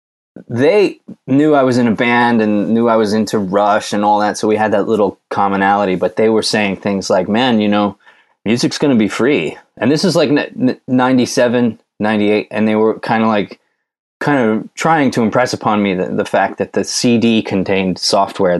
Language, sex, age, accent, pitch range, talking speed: English, male, 20-39, American, 95-120 Hz, 205 wpm